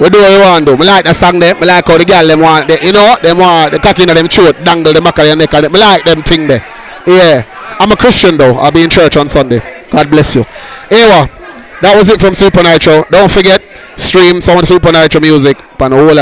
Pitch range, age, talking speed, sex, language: 145-185 Hz, 20-39, 275 wpm, male, English